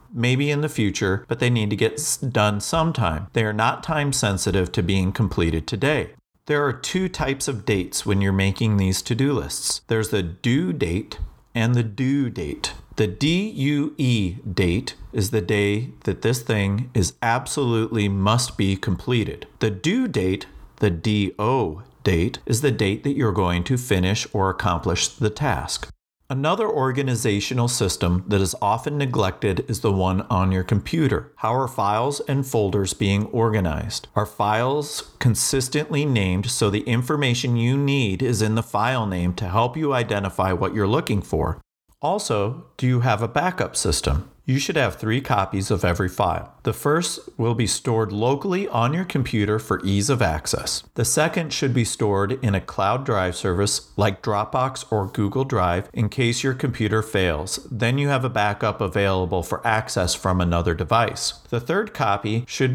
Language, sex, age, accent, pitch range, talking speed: English, male, 40-59, American, 100-130 Hz, 170 wpm